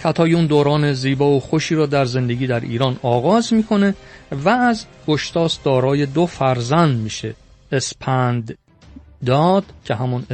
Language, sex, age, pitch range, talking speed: Persian, male, 40-59, 120-160 Hz, 140 wpm